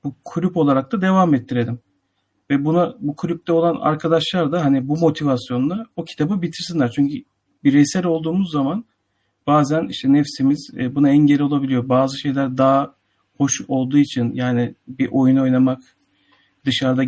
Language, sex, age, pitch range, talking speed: Turkish, male, 50-69, 125-150 Hz, 140 wpm